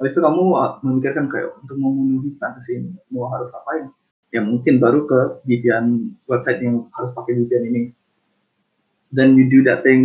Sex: male